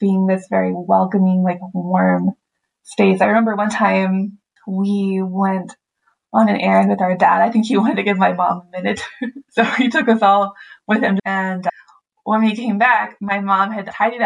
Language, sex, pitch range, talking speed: English, female, 190-225 Hz, 190 wpm